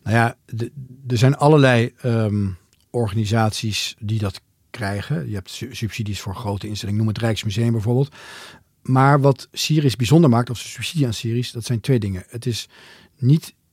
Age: 40-59